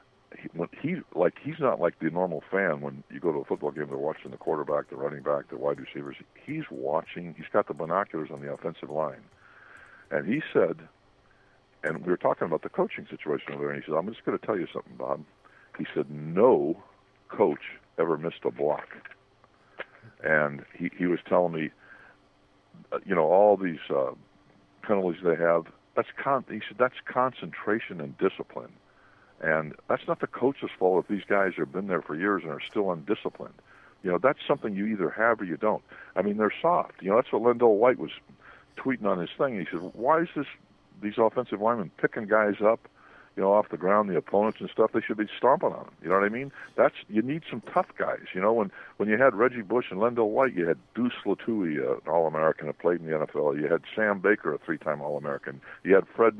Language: English